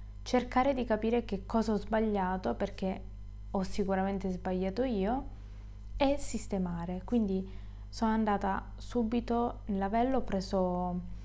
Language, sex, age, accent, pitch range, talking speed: Italian, female, 20-39, native, 180-230 Hz, 115 wpm